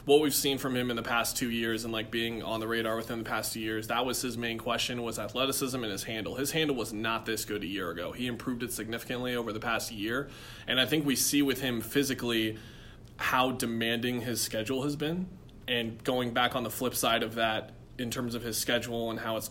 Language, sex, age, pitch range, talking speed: English, male, 20-39, 115-125 Hz, 245 wpm